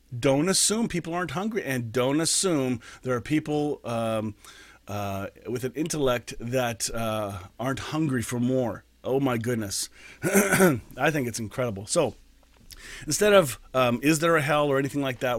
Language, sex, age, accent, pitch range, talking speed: English, male, 40-59, American, 115-155 Hz, 160 wpm